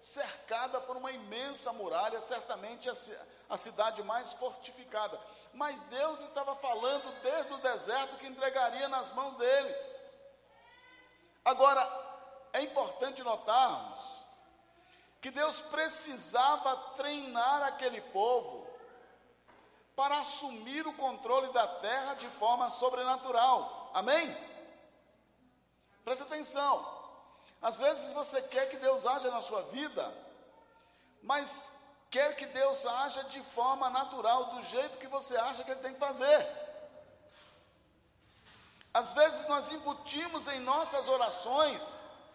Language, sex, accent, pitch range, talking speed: Portuguese, male, Brazilian, 255-300 Hz, 110 wpm